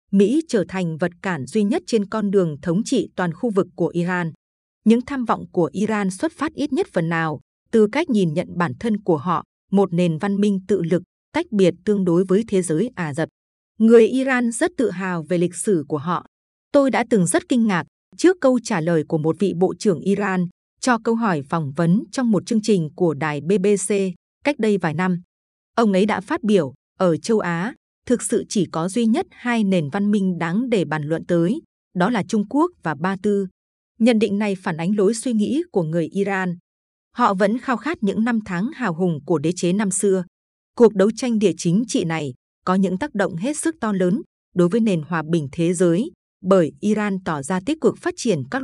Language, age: Vietnamese, 20-39